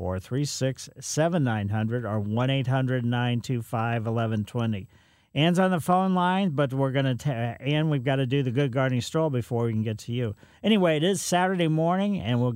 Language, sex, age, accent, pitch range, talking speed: English, male, 50-69, American, 115-160 Hz, 180 wpm